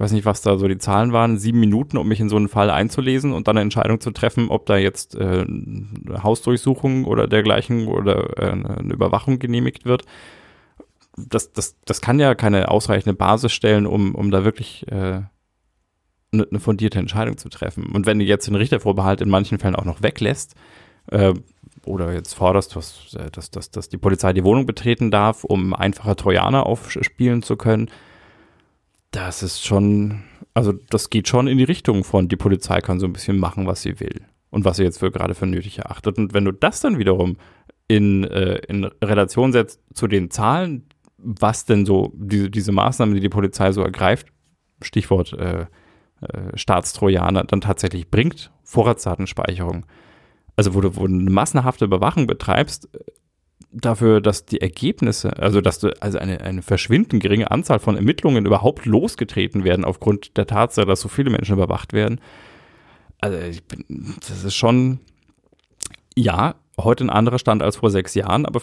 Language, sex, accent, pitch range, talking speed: German, male, German, 95-115 Hz, 170 wpm